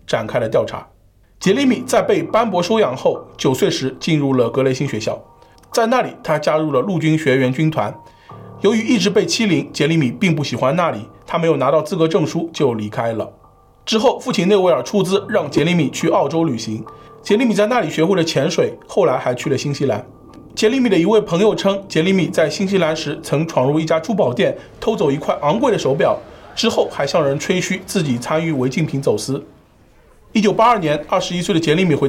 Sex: male